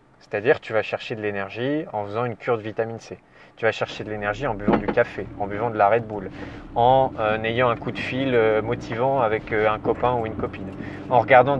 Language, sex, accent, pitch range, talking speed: French, male, French, 110-140 Hz, 245 wpm